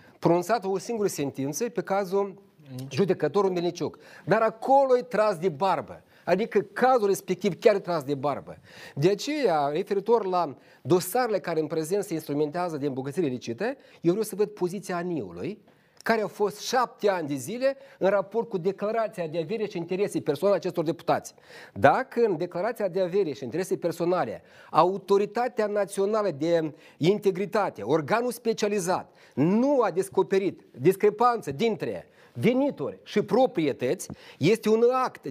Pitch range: 175-230 Hz